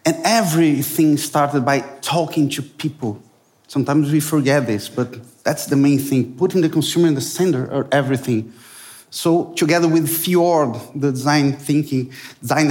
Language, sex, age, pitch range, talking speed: English, male, 30-49, 140-165 Hz, 150 wpm